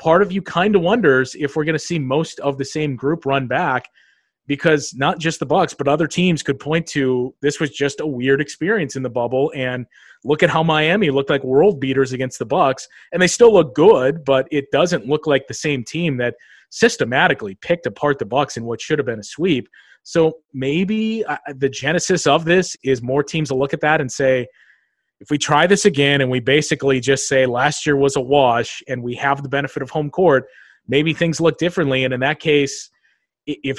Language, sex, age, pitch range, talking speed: English, male, 30-49, 135-160 Hz, 220 wpm